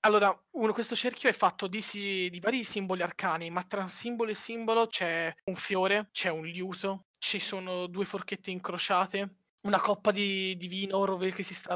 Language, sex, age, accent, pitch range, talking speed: Italian, male, 20-39, native, 170-205 Hz, 180 wpm